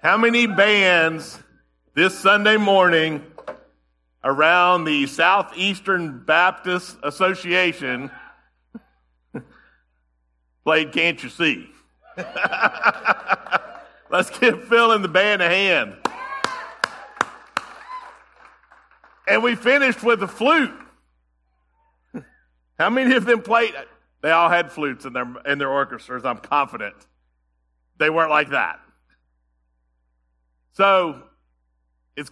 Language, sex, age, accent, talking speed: English, male, 50-69, American, 95 wpm